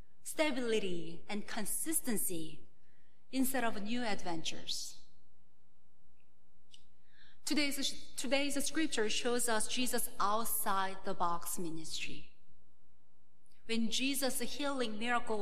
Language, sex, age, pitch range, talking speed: English, female, 30-49, 185-255 Hz, 80 wpm